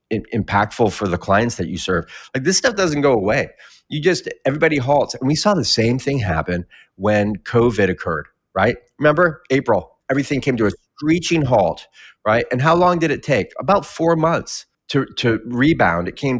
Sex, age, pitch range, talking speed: male, 30-49, 100-130 Hz, 185 wpm